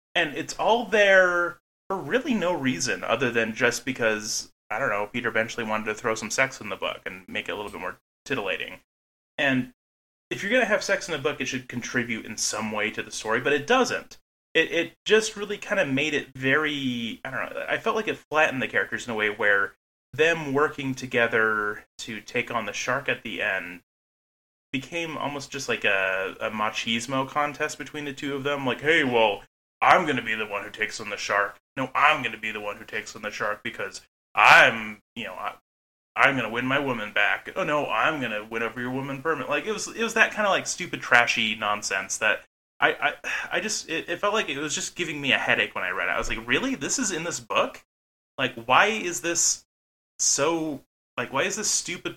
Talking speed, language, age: 230 wpm, English, 30-49